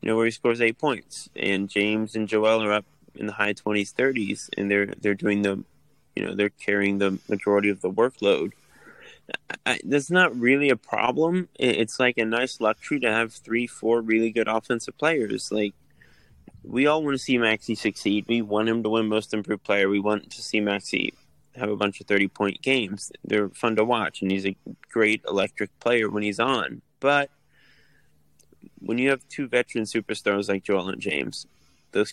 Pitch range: 100-115 Hz